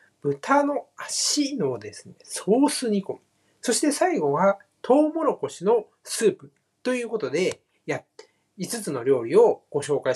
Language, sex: Japanese, male